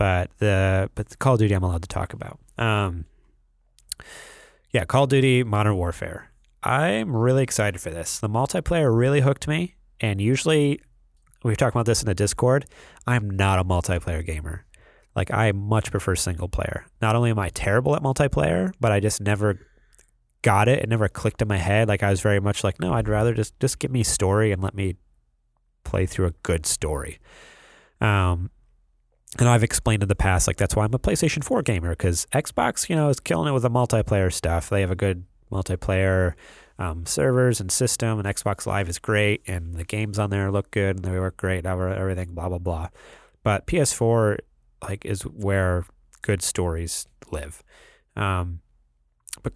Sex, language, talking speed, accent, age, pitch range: male, English, 185 wpm, American, 30-49, 90-115 Hz